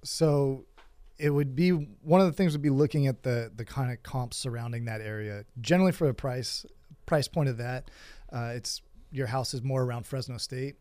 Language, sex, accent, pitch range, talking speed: English, male, American, 110-130 Hz, 205 wpm